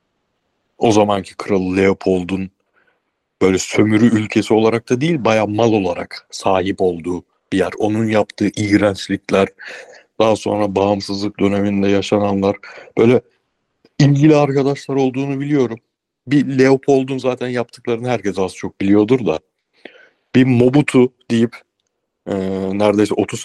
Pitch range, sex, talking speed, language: 95-115 Hz, male, 115 wpm, Turkish